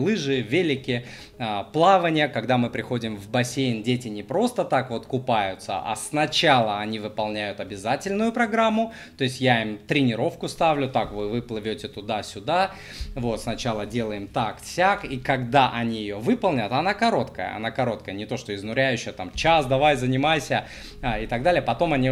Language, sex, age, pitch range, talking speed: Russian, male, 20-39, 115-145 Hz, 150 wpm